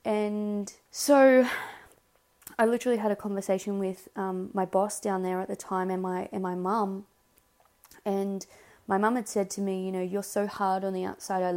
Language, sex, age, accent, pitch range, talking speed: English, female, 20-39, Australian, 185-205 Hz, 190 wpm